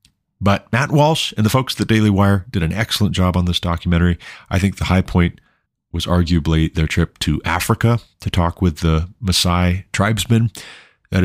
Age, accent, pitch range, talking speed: 40-59, American, 85-105 Hz, 185 wpm